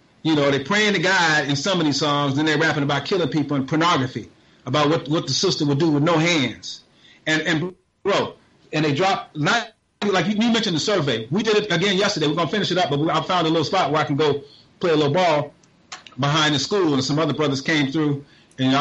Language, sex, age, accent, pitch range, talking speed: English, male, 30-49, American, 145-195 Hz, 250 wpm